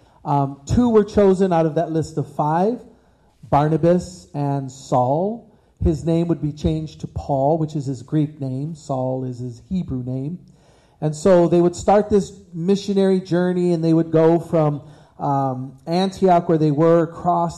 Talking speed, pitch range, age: 165 wpm, 145-175 Hz, 40-59